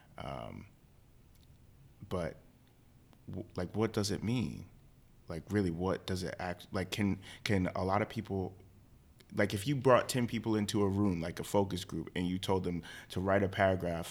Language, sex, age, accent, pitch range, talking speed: English, male, 30-49, American, 90-120 Hz, 175 wpm